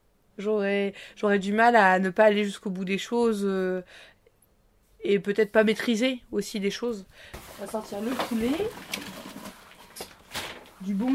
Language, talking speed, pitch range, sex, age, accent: French, 145 wpm, 190-235 Hz, female, 20-39, French